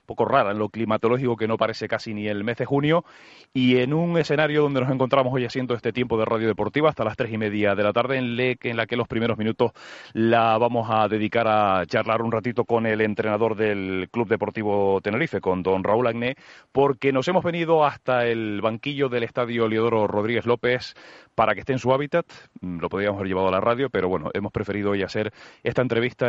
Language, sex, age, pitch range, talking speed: Spanish, male, 30-49, 110-135 Hz, 215 wpm